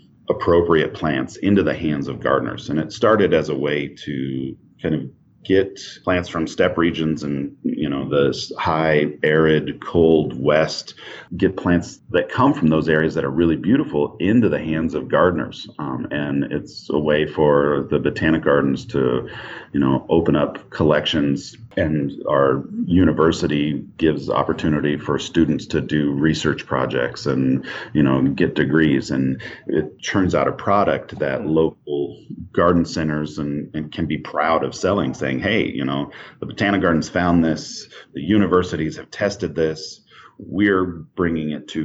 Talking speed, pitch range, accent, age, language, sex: 160 wpm, 70-80 Hz, American, 40-59, English, male